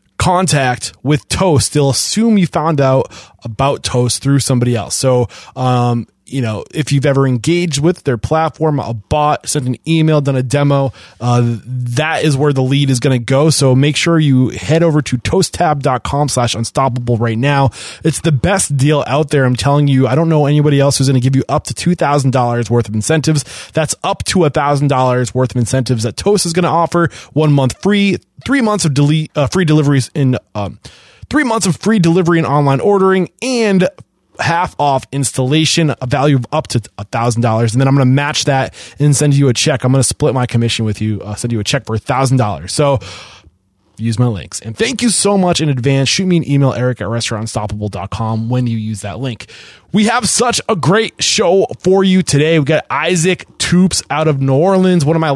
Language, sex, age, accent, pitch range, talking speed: English, male, 20-39, American, 125-155 Hz, 210 wpm